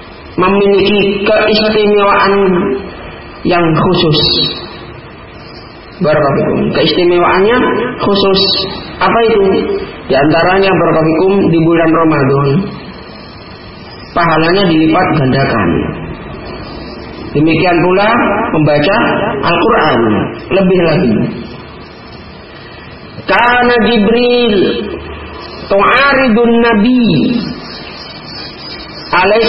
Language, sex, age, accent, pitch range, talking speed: Indonesian, male, 40-59, native, 175-225 Hz, 60 wpm